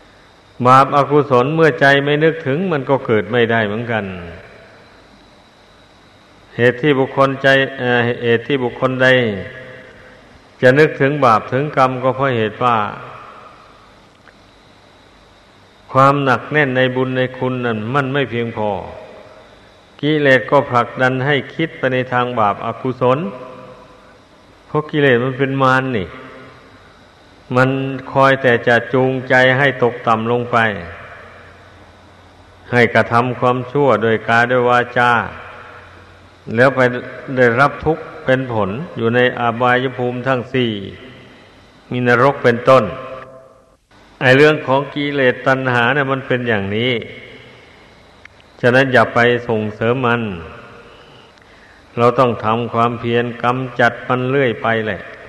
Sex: male